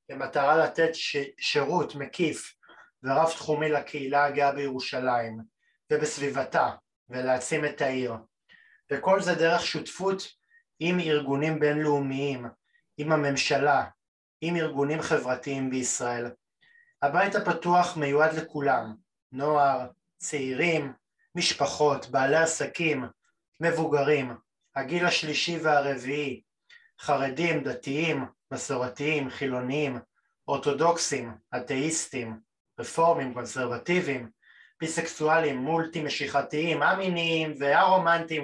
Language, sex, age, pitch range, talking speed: Hebrew, male, 30-49, 135-170 Hz, 80 wpm